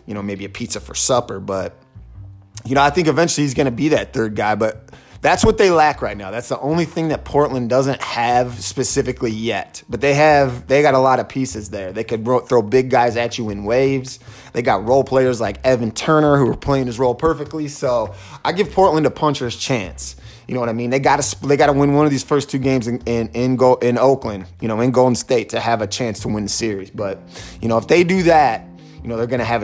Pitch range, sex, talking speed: 115-140 Hz, male, 255 wpm